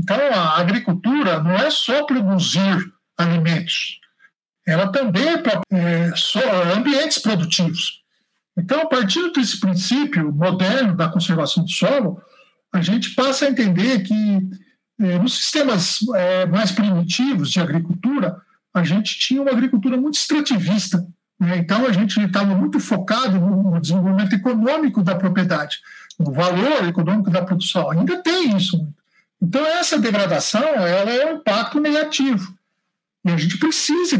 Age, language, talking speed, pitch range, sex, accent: 60-79, Portuguese, 130 wpm, 185-260 Hz, male, Brazilian